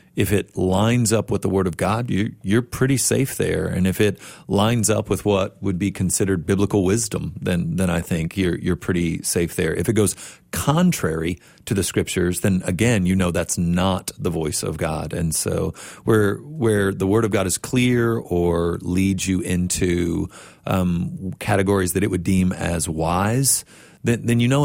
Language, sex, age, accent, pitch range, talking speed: English, male, 40-59, American, 90-105 Hz, 190 wpm